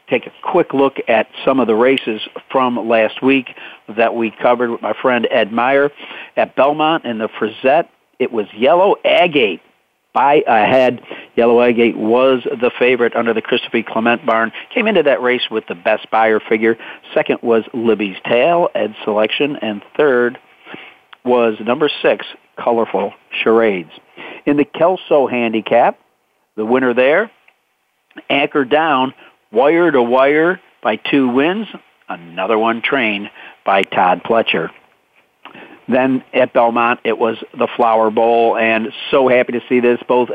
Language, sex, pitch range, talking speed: English, male, 115-145 Hz, 145 wpm